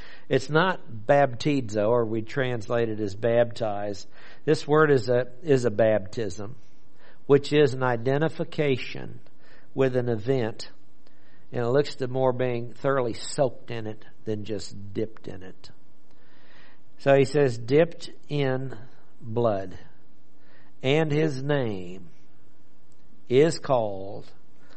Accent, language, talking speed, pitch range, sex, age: American, English, 120 wpm, 115-145 Hz, male, 60-79